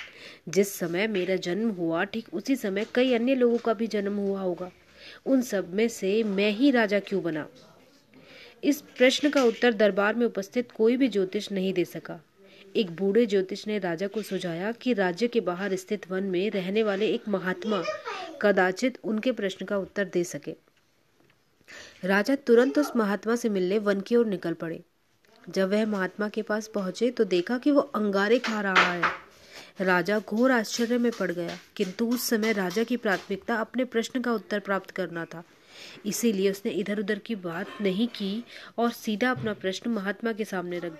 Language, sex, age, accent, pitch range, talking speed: Hindi, female, 30-49, native, 190-230 Hz, 180 wpm